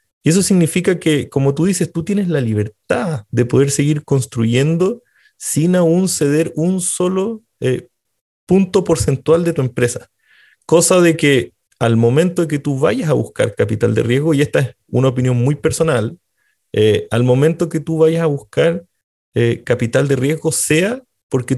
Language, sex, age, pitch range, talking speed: Spanish, male, 30-49, 125-165 Hz, 170 wpm